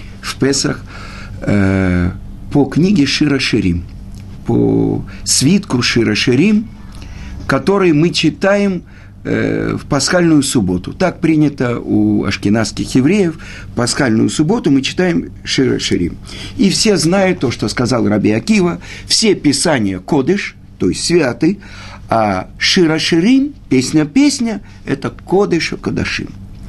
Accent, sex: native, male